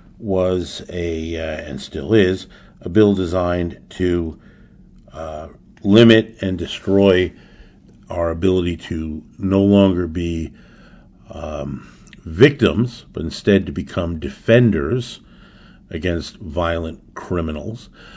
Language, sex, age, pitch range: English, male, 50-69, 85-100 Hz